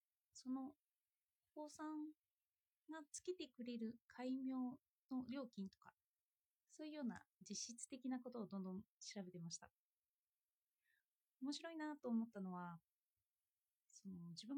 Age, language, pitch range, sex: 20-39, Japanese, 195-285 Hz, female